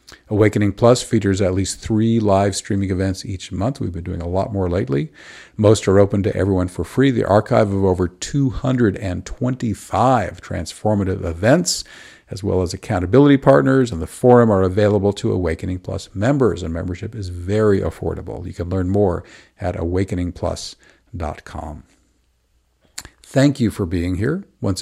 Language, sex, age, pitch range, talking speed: English, male, 50-69, 90-110 Hz, 150 wpm